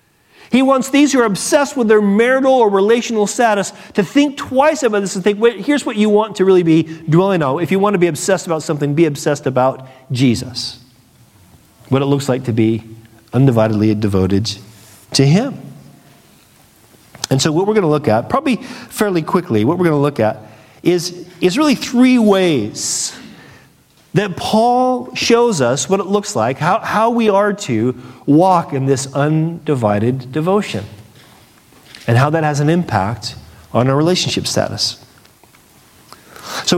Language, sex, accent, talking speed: English, male, American, 165 wpm